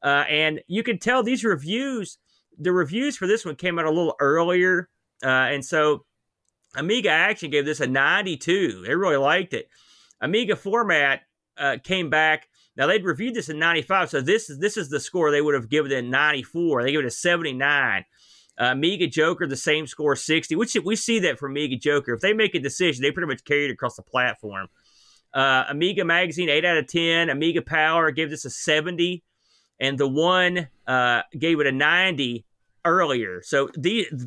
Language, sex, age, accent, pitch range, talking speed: English, male, 30-49, American, 135-180 Hz, 195 wpm